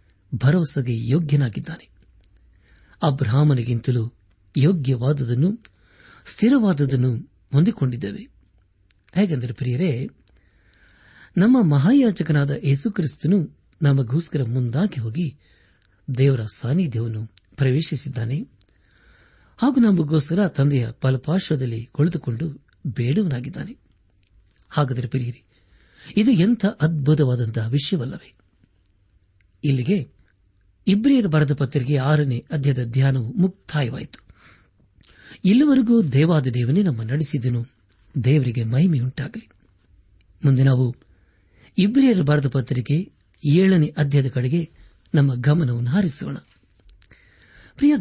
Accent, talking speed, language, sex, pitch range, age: native, 65 wpm, Kannada, male, 115-165 Hz, 60-79